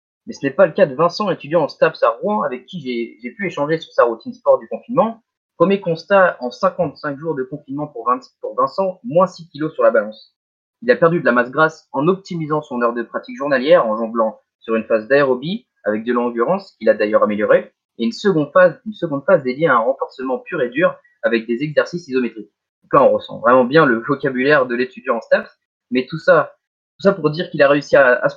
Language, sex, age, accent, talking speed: French, male, 20-39, French, 235 wpm